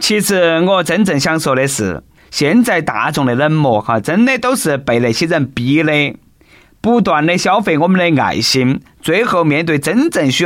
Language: Chinese